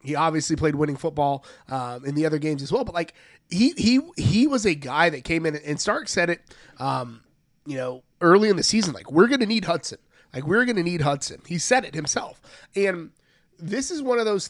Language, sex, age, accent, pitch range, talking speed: English, male, 30-49, American, 150-190 Hz, 230 wpm